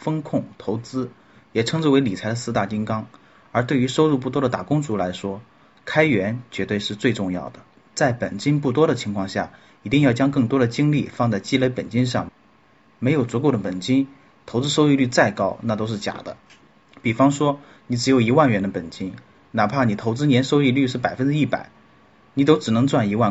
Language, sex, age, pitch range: Chinese, male, 30-49, 110-140 Hz